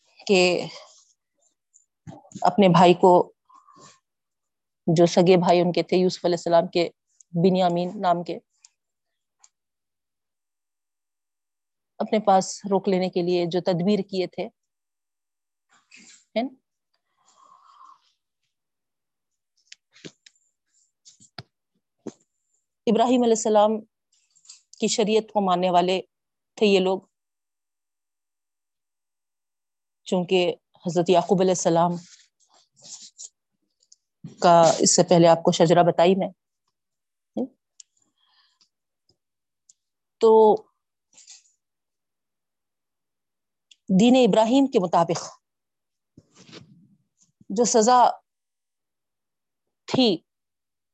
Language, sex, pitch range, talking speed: Urdu, female, 170-210 Hz, 70 wpm